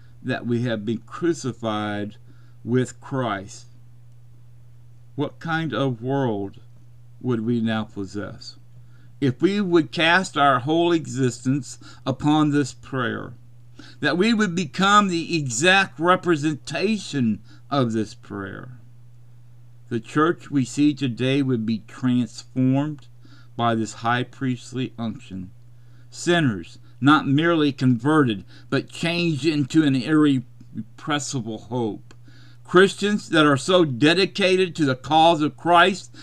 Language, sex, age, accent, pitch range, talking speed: English, male, 50-69, American, 120-155 Hz, 115 wpm